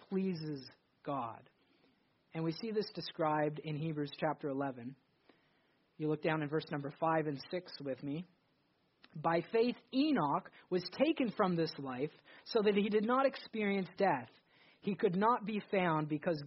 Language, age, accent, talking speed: English, 40-59, American, 155 wpm